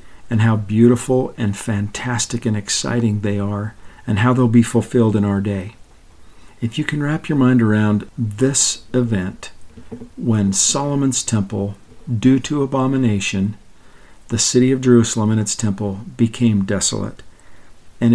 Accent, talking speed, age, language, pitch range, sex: American, 140 wpm, 50-69, English, 105-125 Hz, male